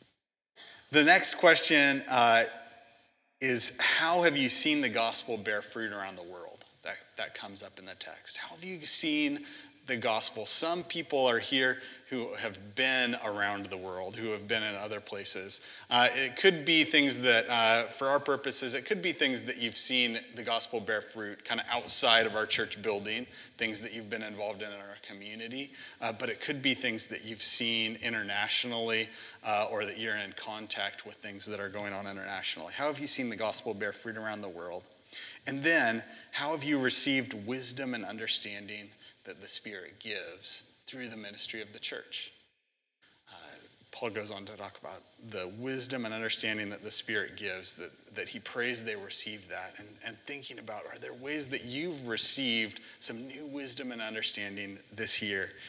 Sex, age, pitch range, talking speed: male, 30-49, 110-140 Hz, 185 wpm